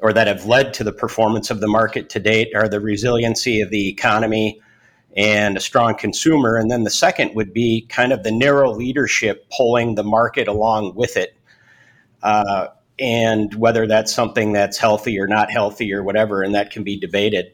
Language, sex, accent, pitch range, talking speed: English, male, American, 105-130 Hz, 190 wpm